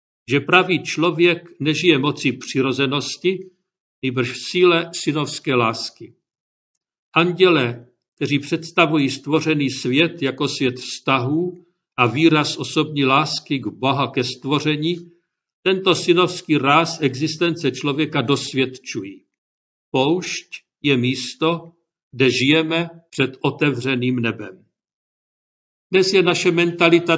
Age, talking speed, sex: 50-69, 100 wpm, male